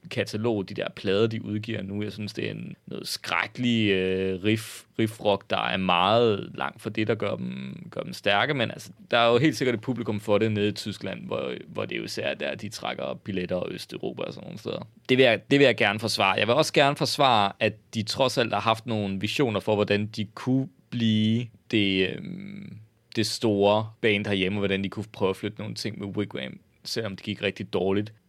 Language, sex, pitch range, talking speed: Danish, male, 105-135 Hz, 215 wpm